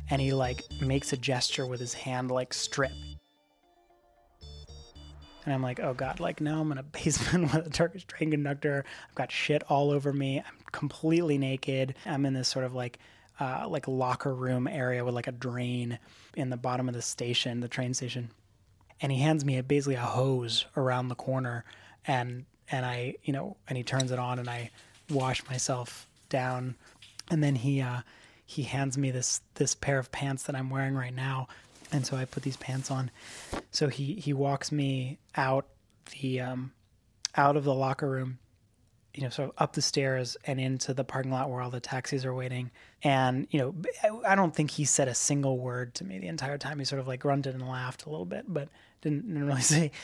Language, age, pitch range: English, 20-39, 125-140 Hz